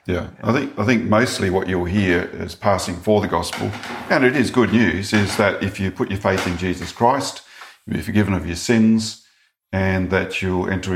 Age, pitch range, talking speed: 50-69, 90-105 Hz, 215 wpm